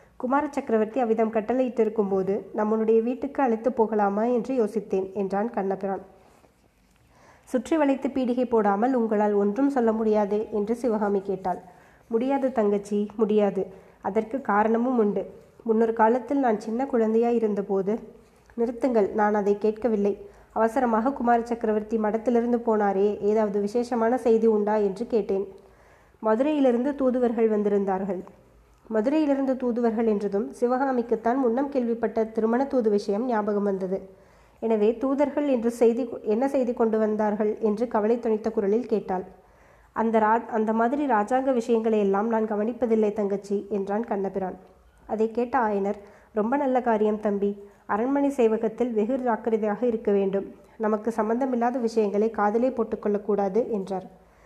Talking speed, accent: 120 wpm, native